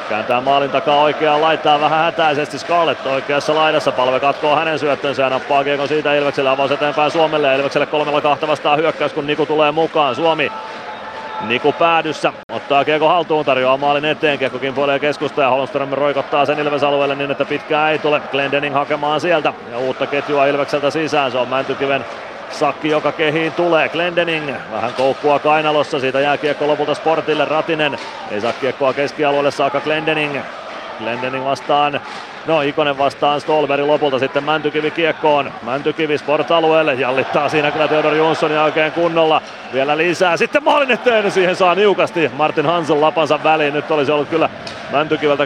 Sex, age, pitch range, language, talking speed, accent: male, 30-49, 140-155 Hz, Finnish, 160 wpm, native